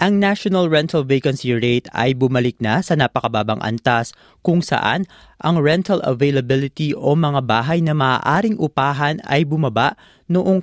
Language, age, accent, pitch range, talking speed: Filipino, 20-39, native, 125-165 Hz, 140 wpm